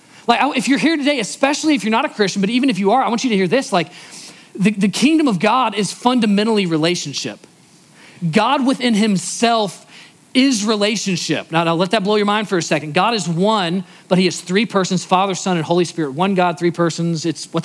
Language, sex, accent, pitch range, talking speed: English, male, American, 165-225 Hz, 220 wpm